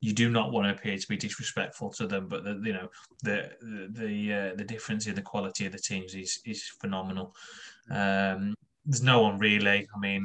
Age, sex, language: 20-39, male, English